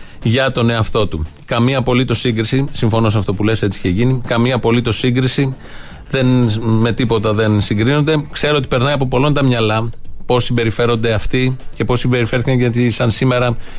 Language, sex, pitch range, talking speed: Greek, male, 110-135 Hz, 165 wpm